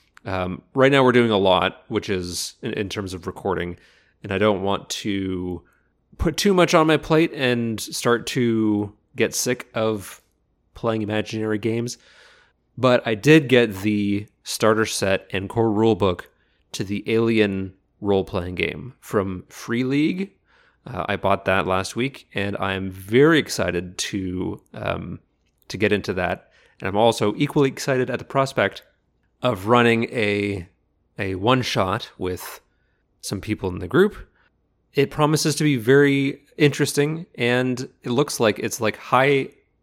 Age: 30-49